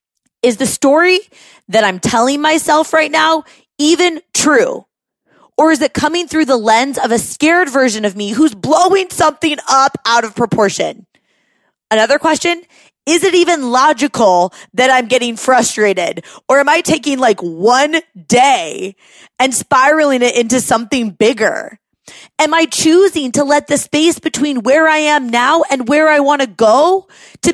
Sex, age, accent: female, 20-39, American